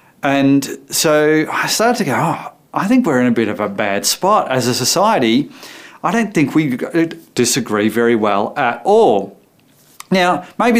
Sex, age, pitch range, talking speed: male, 30-49, 115-165 Hz, 170 wpm